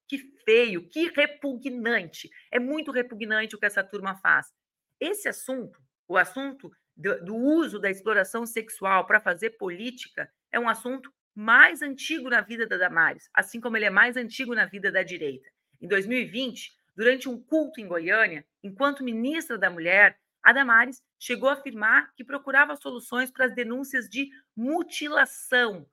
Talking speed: 155 wpm